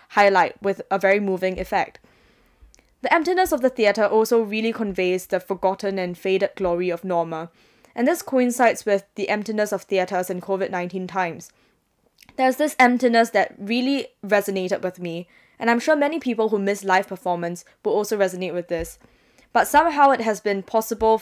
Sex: female